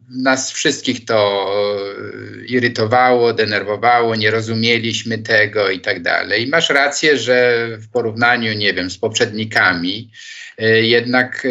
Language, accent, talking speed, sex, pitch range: Polish, native, 115 wpm, male, 105-135 Hz